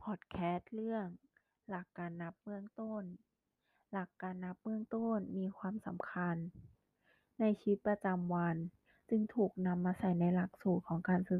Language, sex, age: Thai, female, 20-39